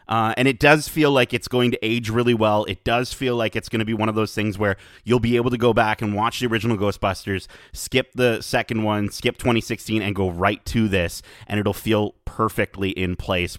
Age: 30-49